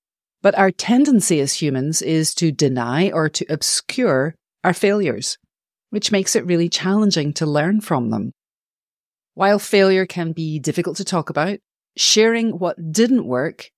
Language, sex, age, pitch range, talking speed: English, female, 40-59, 140-190 Hz, 150 wpm